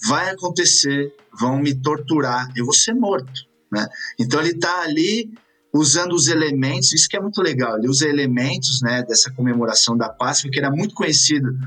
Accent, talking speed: Brazilian, 175 wpm